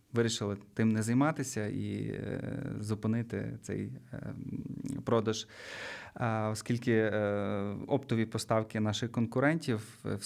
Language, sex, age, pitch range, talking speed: Ukrainian, male, 20-39, 105-125 Hz, 80 wpm